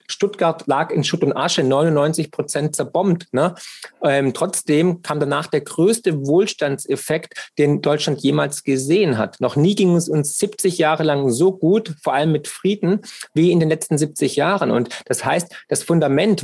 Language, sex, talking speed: German, male, 170 wpm